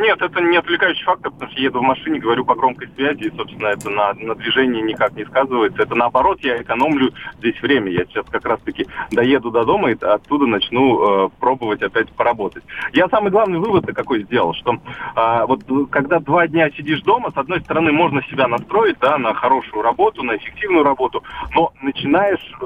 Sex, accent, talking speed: male, native, 195 wpm